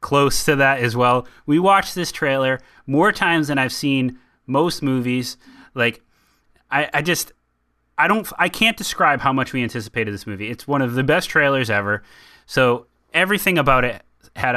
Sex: male